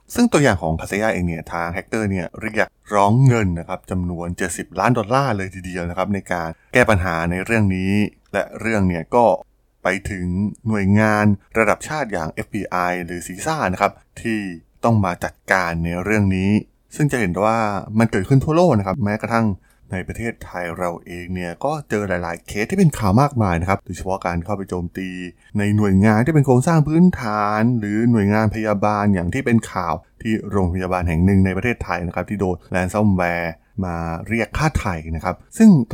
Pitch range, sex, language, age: 90-110 Hz, male, Thai, 20-39